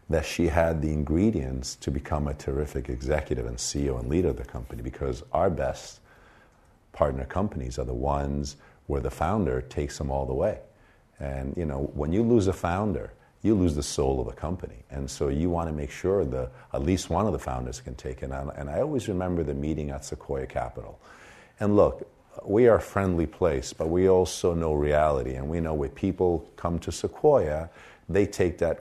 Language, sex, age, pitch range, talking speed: English, male, 50-69, 70-90 Hz, 205 wpm